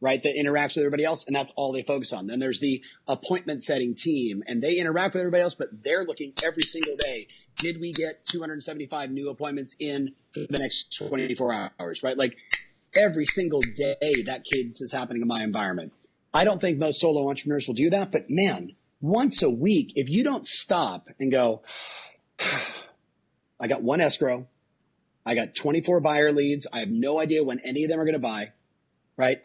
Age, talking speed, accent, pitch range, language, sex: 30-49, 190 wpm, American, 135-160 Hz, English, male